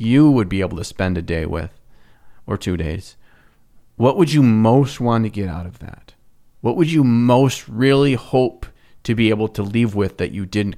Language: English